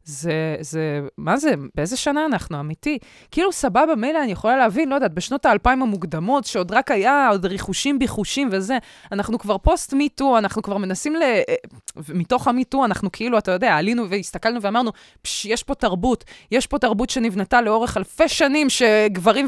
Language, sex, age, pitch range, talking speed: Hebrew, female, 20-39, 200-270 Hz, 165 wpm